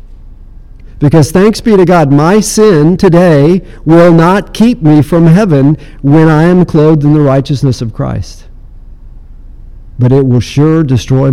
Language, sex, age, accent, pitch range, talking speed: English, male, 50-69, American, 120-165 Hz, 150 wpm